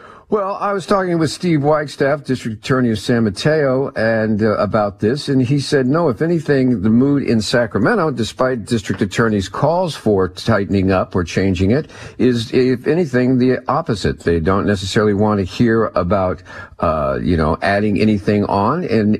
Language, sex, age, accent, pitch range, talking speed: English, male, 50-69, American, 105-135 Hz, 170 wpm